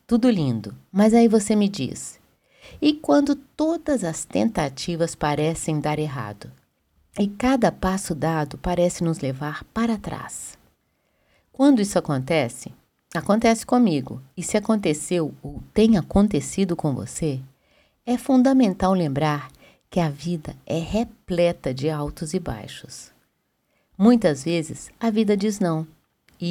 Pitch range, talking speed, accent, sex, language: 155-215 Hz, 125 wpm, Brazilian, female, Portuguese